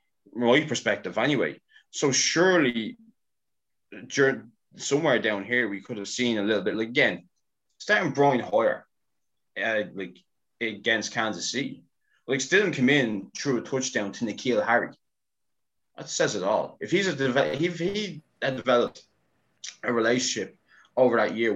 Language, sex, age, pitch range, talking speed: English, male, 20-39, 95-135 Hz, 150 wpm